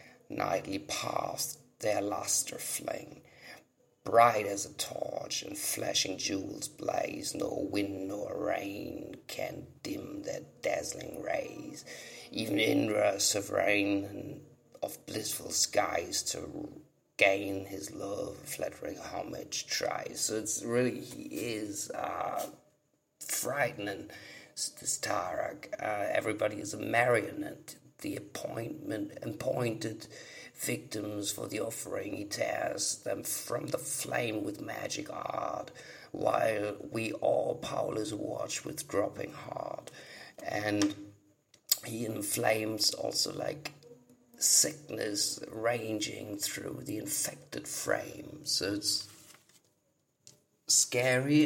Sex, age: male, 50-69